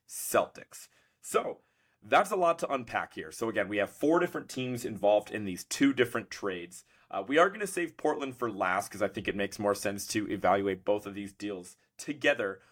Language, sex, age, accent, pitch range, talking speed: English, male, 30-49, American, 100-135 Hz, 210 wpm